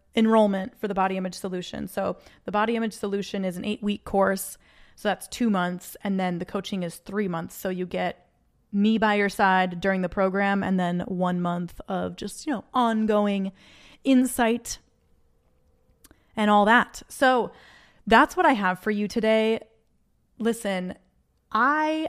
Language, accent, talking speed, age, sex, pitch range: English, American, 160 wpm, 20-39, female, 190-245 Hz